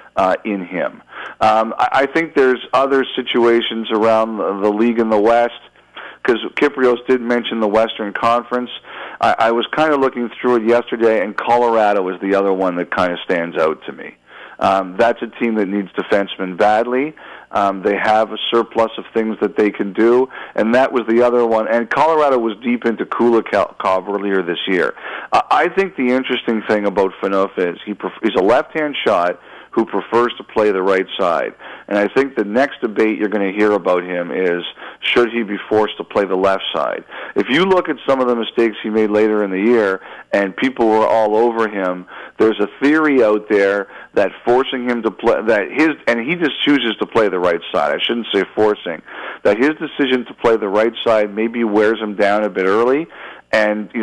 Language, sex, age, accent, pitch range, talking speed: English, male, 40-59, American, 105-120 Hz, 210 wpm